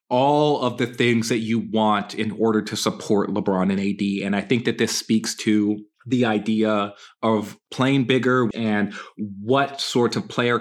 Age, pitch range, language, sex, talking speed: 30-49, 110-145 Hz, English, male, 175 wpm